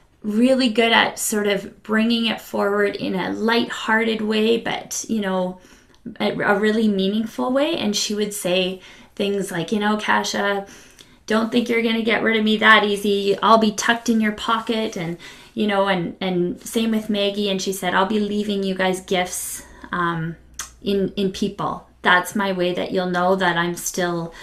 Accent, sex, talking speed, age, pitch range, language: American, female, 185 wpm, 20-39, 180-220 Hz, English